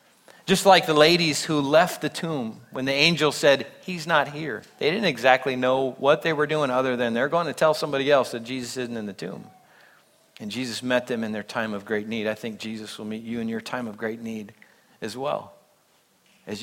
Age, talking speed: 40-59, 225 wpm